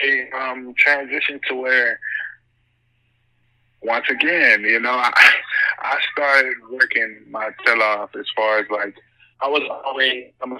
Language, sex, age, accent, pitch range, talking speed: English, male, 20-39, American, 105-120 Hz, 140 wpm